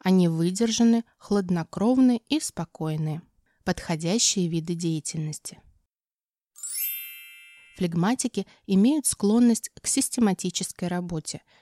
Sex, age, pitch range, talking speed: female, 20-39, 165-210 Hz, 70 wpm